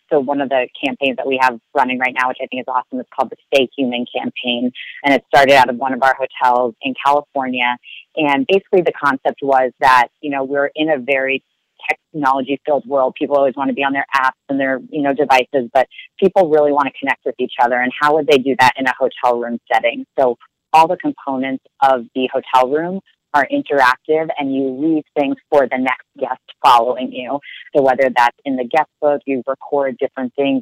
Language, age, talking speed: English, 30-49, 220 wpm